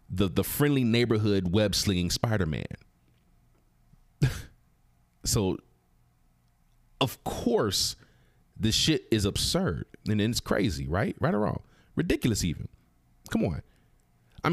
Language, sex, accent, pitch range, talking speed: English, male, American, 80-115 Hz, 110 wpm